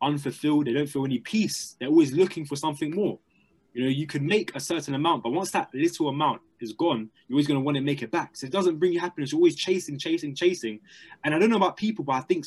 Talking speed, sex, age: 270 wpm, male, 20-39